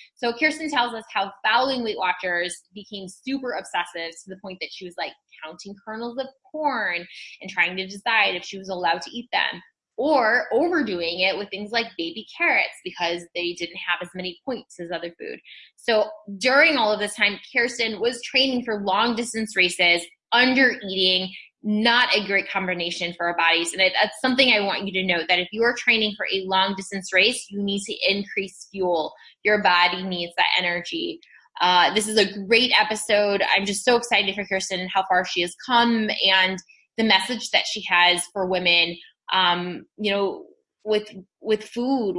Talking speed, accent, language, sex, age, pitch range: 190 wpm, American, English, female, 20-39, 185-235 Hz